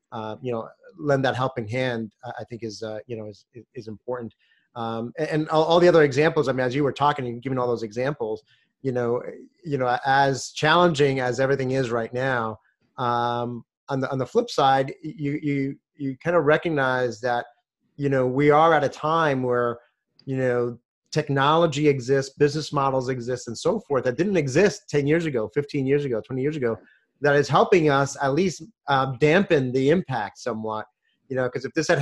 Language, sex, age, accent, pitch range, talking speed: English, male, 30-49, American, 125-150 Hz, 200 wpm